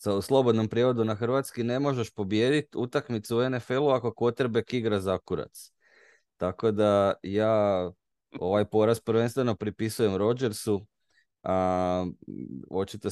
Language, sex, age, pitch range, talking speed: Croatian, male, 20-39, 90-115 Hz, 115 wpm